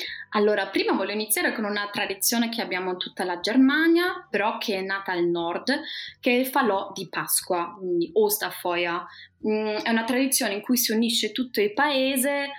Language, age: Italian, 20-39